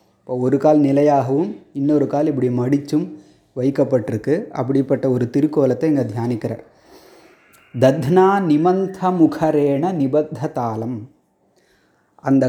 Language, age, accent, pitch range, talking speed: Tamil, 30-49, native, 130-155 Hz, 90 wpm